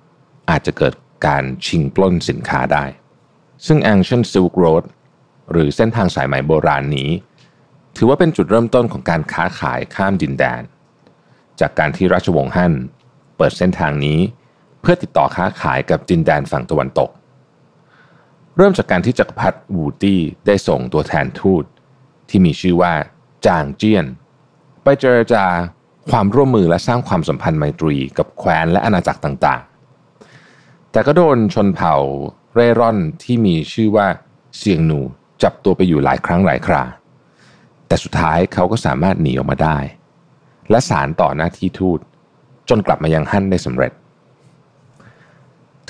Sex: male